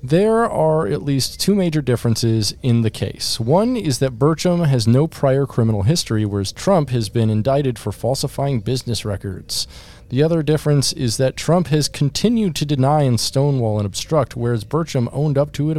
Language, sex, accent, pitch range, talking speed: English, male, American, 110-155 Hz, 180 wpm